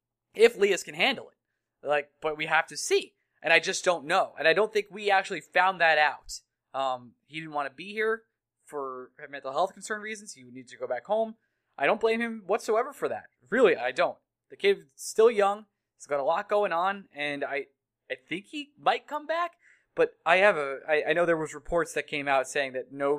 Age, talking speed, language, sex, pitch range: 20-39, 230 wpm, English, male, 135-200 Hz